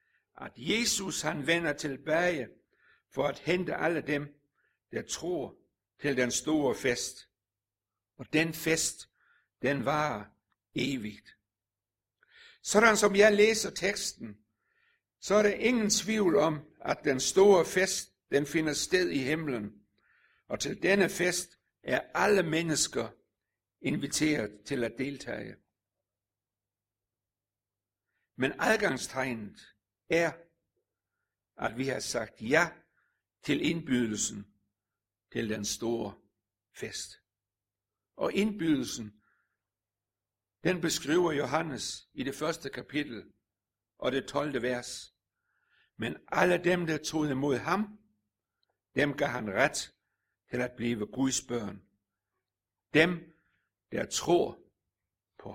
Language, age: Danish, 60-79